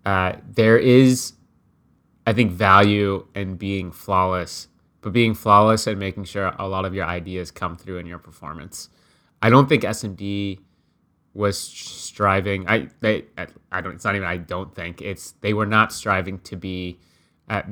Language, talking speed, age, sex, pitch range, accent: English, 165 wpm, 20-39, male, 95-105 Hz, American